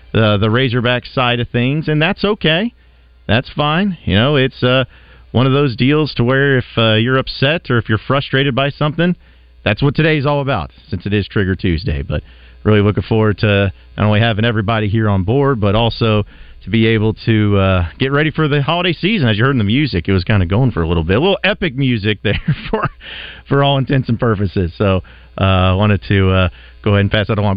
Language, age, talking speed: English, 40-59, 225 wpm